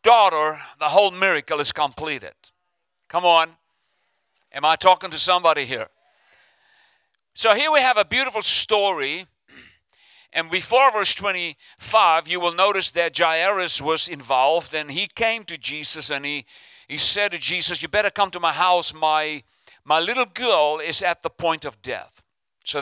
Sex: male